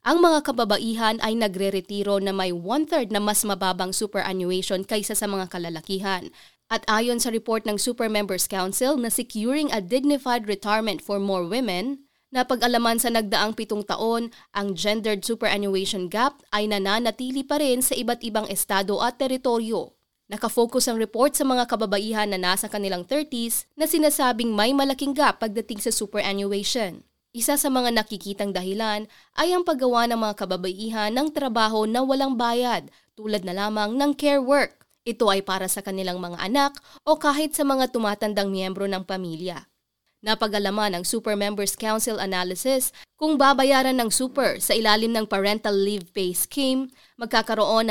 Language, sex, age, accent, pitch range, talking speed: Filipino, female, 20-39, native, 200-255 Hz, 155 wpm